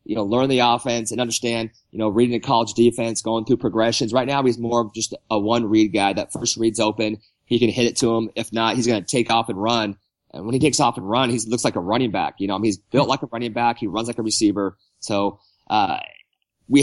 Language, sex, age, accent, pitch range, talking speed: English, male, 30-49, American, 110-125 Hz, 270 wpm